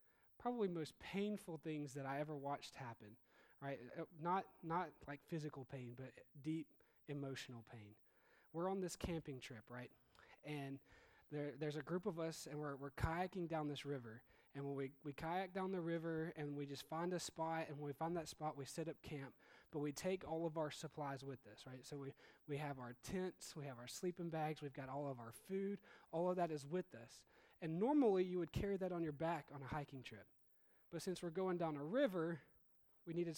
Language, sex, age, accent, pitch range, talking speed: English, male, 20-39, American, 140-170 Hz, 215 wpm